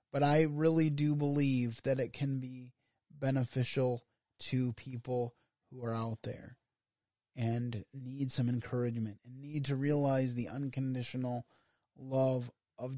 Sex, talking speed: male, 130 wpm